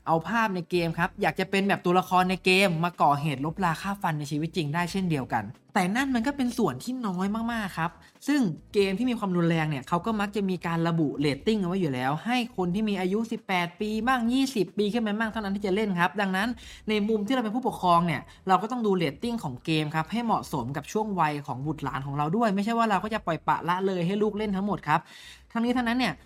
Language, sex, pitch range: Thai, male, 160-210 Hz